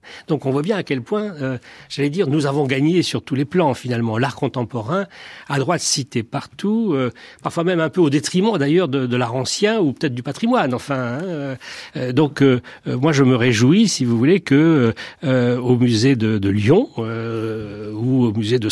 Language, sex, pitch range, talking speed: French, male, 120-155 Hz, 200 wpm